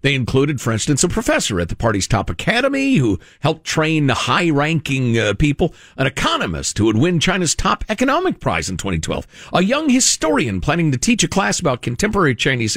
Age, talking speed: 50-69, 190 wpm